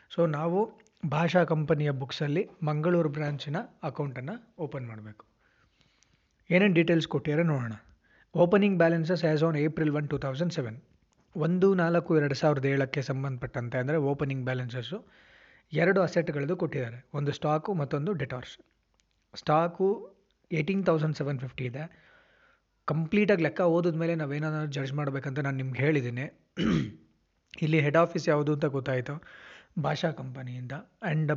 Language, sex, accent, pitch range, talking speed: Kannada, male, native, 140-170 Hz, 120 wpm